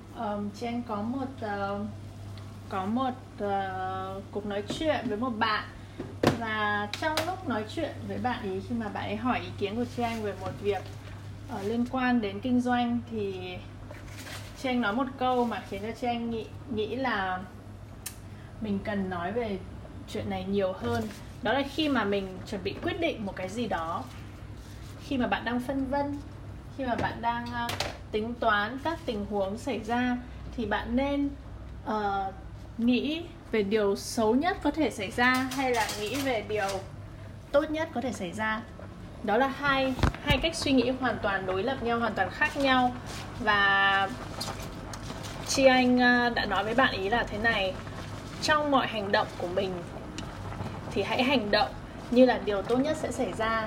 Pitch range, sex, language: 190-255 Hz, female, Vietnamese